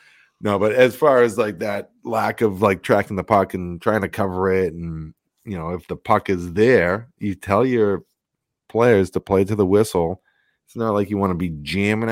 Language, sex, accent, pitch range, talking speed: English, male, American, 85-100 Hz, 215 wpm